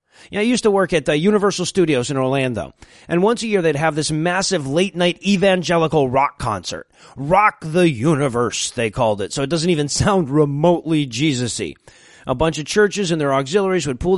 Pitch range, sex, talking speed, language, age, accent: 165-220 Hz, male, 190 wpm, English, 30-49, American